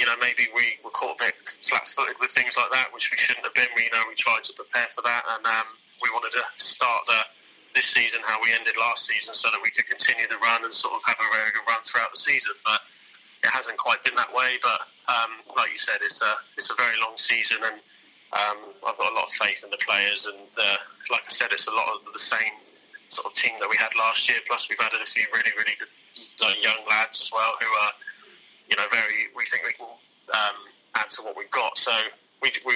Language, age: English, 30-49